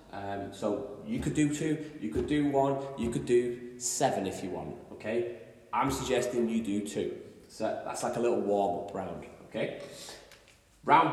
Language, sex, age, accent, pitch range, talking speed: English, male, 20-39, British, 105-130 Hz, 175 wpm